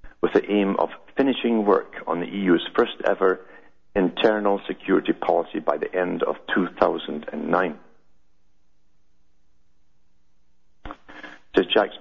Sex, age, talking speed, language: male, 50-69, 90 wpm, English